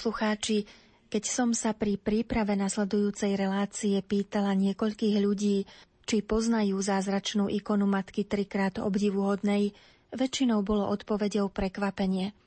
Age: 30-49